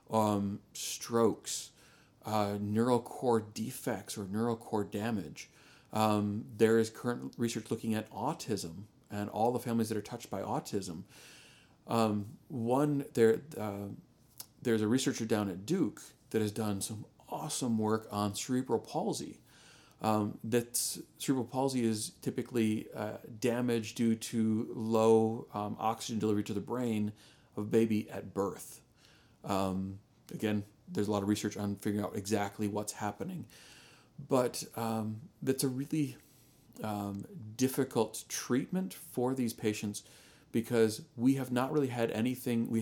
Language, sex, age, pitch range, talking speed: English, male, 40-59, 105-125 Hz, 140 wpm